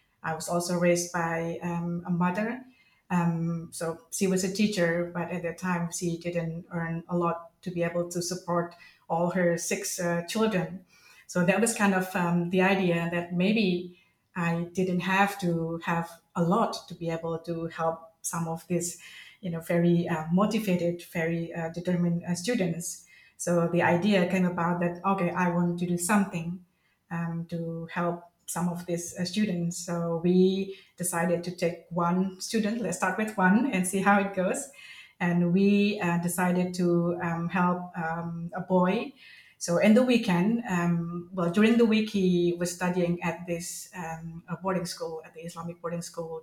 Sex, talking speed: female, 175 wpm